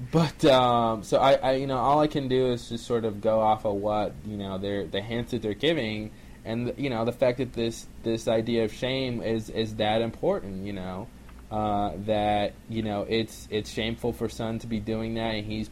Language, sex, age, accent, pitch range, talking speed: English, male, 20-39, American, 100-120 Hz, 225 wpm